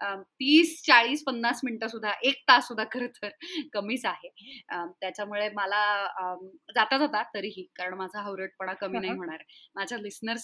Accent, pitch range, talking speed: native, 210-265 Hz, 145 wpm